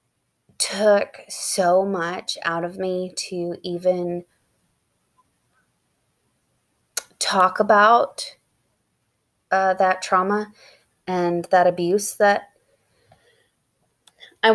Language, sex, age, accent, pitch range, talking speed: English, female, 20-39, American, 175-200 Hz, 75 wpm